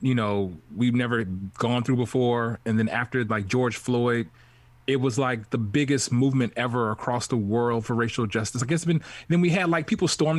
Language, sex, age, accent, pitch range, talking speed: English, male, 20-39, American, 110-135 Hz, 200 wpm